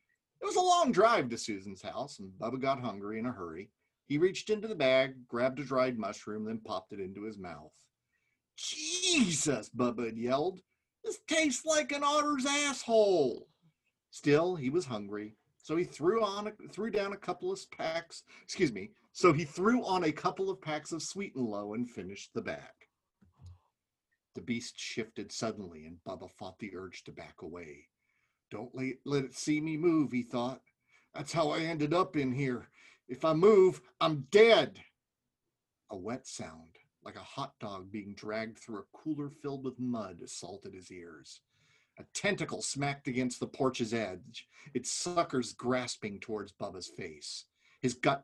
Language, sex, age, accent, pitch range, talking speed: English, male, 40-59, American, 120-185 Hz, 170 wpm